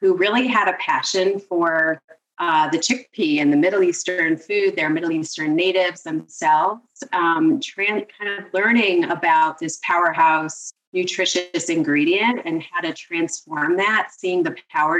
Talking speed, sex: 145 wpm, female